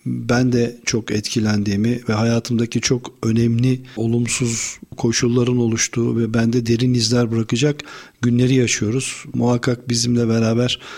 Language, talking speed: Turkish, 115 wpm